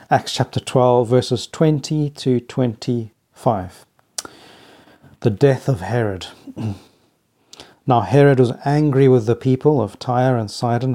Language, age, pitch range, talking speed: English, 40-59, 115-140 Hz, 120 wpm